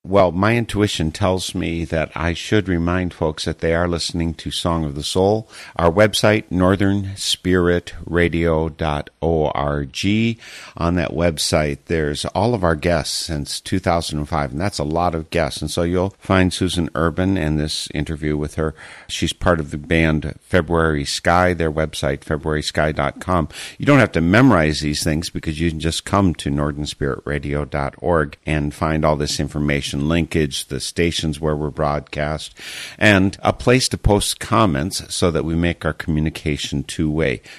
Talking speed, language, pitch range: 155 wpm, English, 75-90 Hz